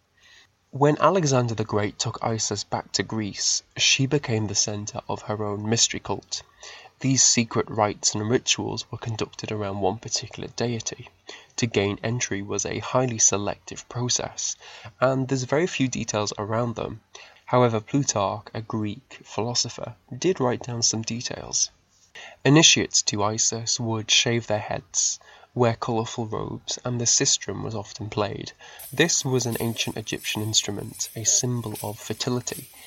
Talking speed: 145 wpm